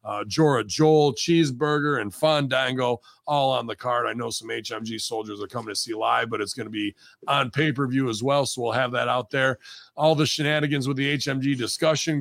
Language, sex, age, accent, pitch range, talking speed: English, male, 40-59, American, 110-145 Hz, 205 wpm